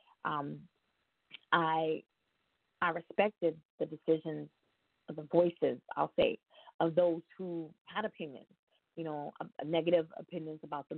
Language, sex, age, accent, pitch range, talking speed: English, female, 20-39, American, 155-175 Hz, 130 wpm